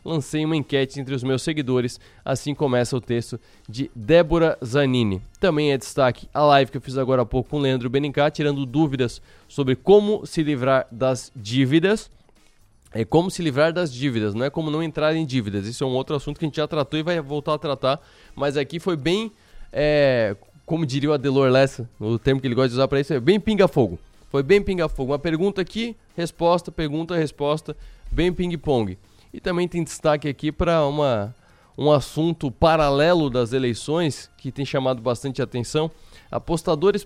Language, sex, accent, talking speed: Portuguese, male, Brazilian, 185 wpm